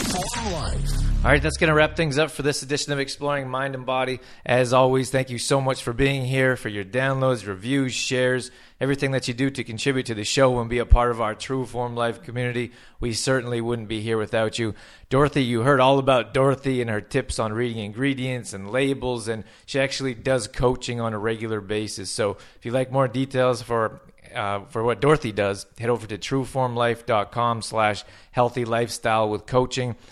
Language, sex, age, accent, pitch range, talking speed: English, male, 30-49, American, 110-130 Hz, 195 wpm